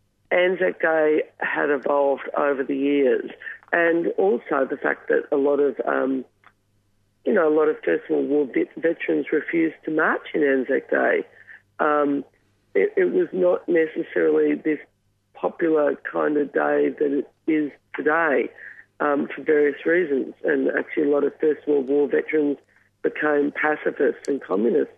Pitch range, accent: 145-180 Hz, Australian